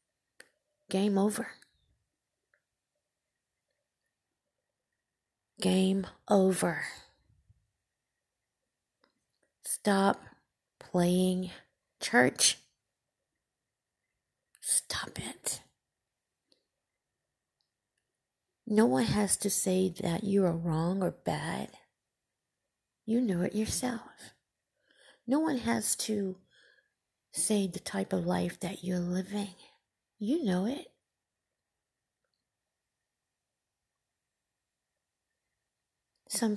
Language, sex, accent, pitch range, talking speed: English, female, American, 190-230 Hz, 65 wpm